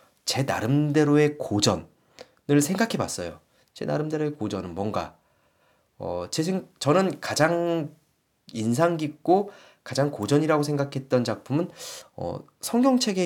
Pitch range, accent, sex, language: 115-165 Hz, native, male, Korean